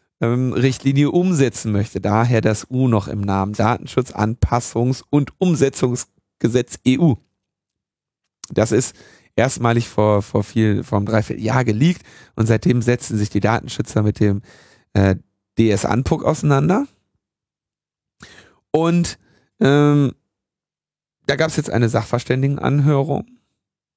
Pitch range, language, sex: 110-140 Hz, German, male